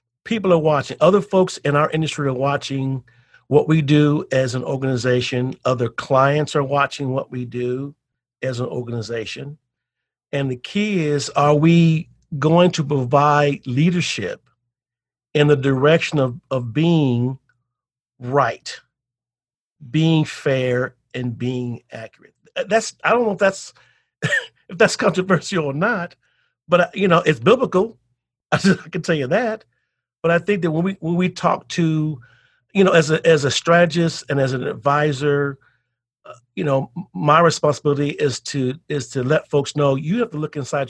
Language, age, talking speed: English, 50-69, 155 wpm